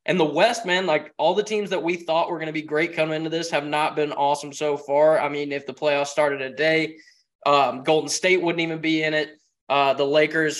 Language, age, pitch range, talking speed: English, 20-39, 145-160 Hz, 250 wpm